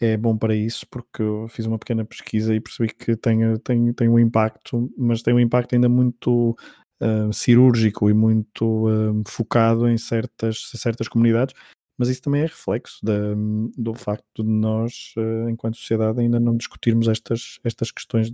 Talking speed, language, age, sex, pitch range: 155 wpm, Portuguese, 20-39, male, 105-120 Hz